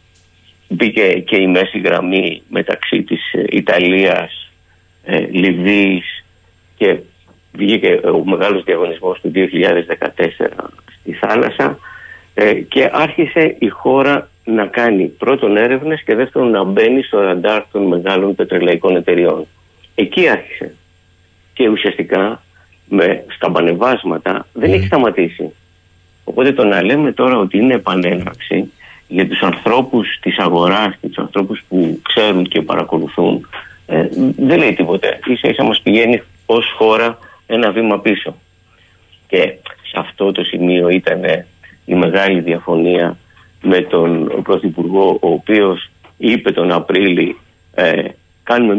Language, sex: Greek, male